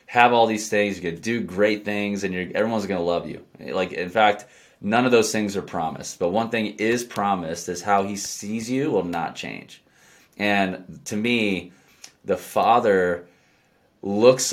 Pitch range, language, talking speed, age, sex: 90-110 Hz, English, 180 wpm, 20-39, male